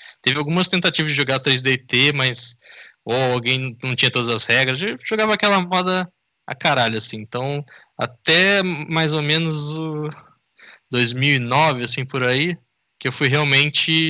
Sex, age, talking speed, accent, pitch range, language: male, 10-29, 150 wpm, Brazilian, 115-145 Hz, Portuguese